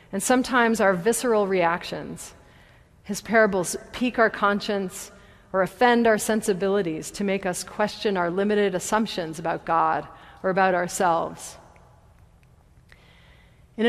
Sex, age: female, 40-59